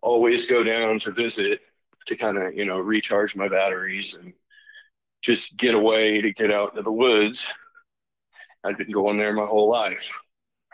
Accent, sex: American, male